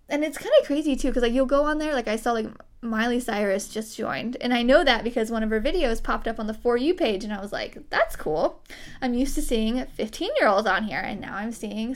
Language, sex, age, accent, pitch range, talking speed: English, female, 10-29, American, 215-270 Hz, 265 wpm